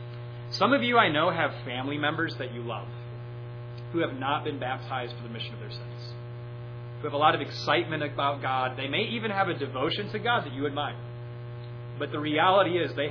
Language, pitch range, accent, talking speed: English, 120-150 Hz, American, 210 wpm